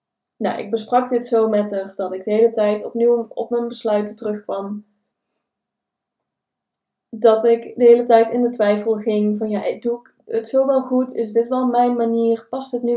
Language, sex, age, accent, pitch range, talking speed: Dutch, female, 20-39, Dutch, 210-240 Hz, 195 wpm